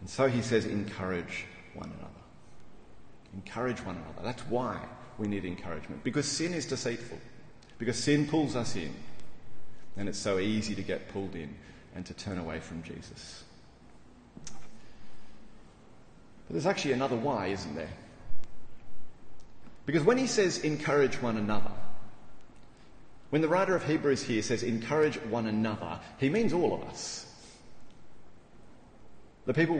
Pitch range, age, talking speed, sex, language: 100-140 Hz, 30-49, 140 wpm, male, English